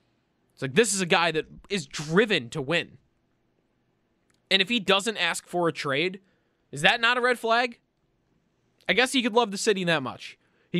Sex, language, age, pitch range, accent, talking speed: male, English, 20-39, 135-195 Hz, American, 195 wpm